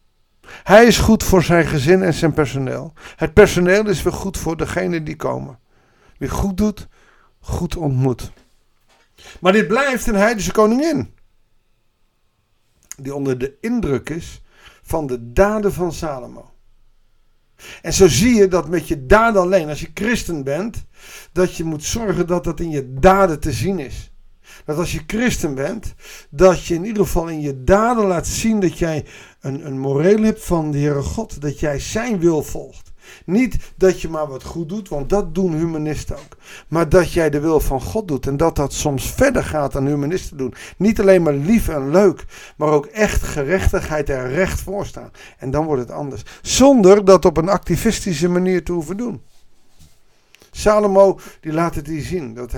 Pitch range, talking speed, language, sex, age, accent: 140-190 Hz, 180 wpm, Dutch, male, 50-69, Dutch